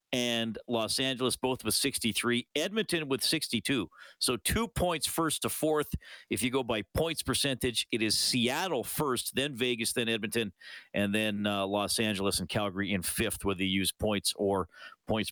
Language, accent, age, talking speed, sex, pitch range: English, American, 50-69, 170 wpm, male, 110-165 Hz